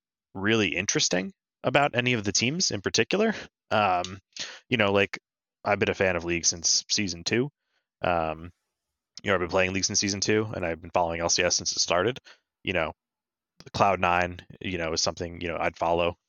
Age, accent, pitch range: 20-39, American, 85-100 Hz